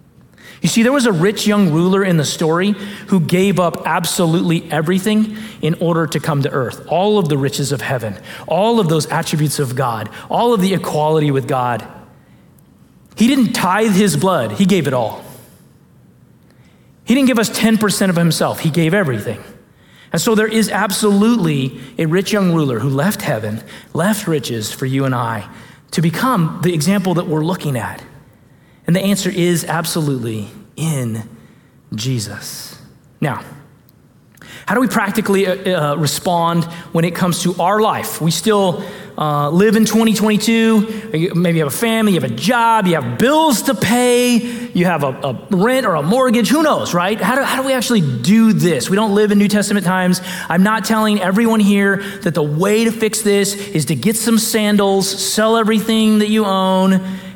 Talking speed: 180 wpm